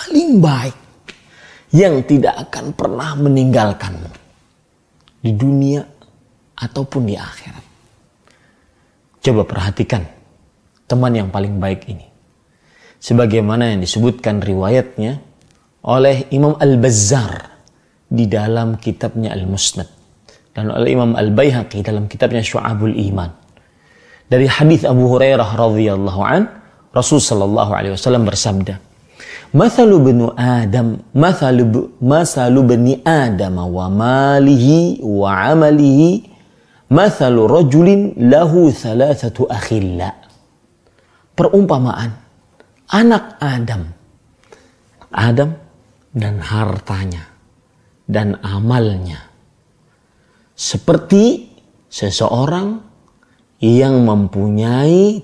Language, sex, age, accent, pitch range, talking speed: Indonesian, male, 30-49, native, 105-140 Hz, 70 wpm